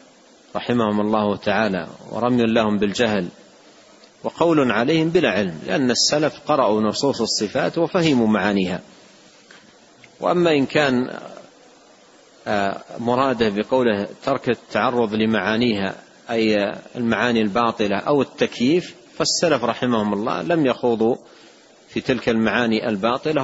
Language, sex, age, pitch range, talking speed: Arabic, male, 40-59, 105-130 Hz, 95 wpm